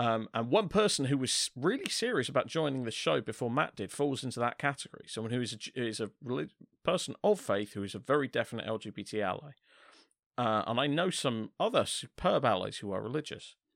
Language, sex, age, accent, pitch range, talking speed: English, male, 40-59, British, 100-140 Hz, 200 wpm